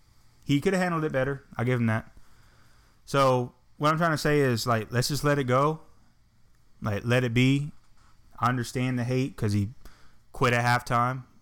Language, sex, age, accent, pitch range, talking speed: English, male, 20-39, American, 100-125 Hz, 190 wpm